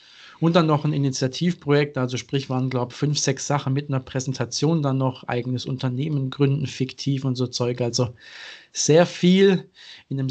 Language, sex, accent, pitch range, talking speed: German, male, German, 130-145 Hz, 175 wpm